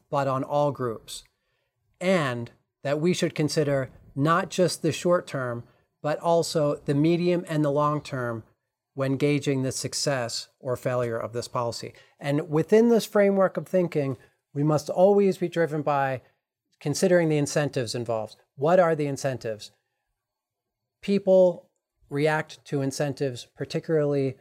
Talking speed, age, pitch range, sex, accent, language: 135 wpm, 40-59, 125-160 Hz, male, American, English